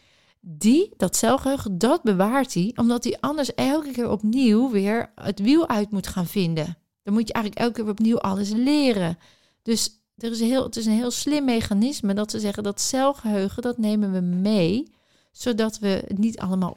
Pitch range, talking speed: 185-230 Hz, 190 wpm